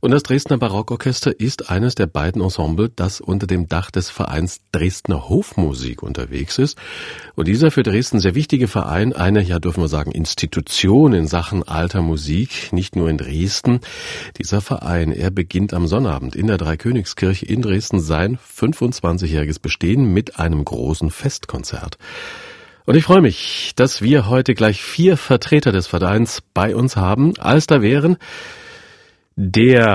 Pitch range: 85-130 Hz